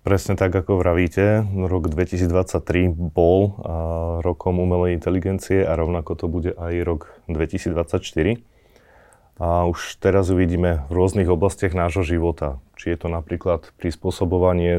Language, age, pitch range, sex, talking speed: Slovak, 30-49, 80-95 Hz, male, 130 wpm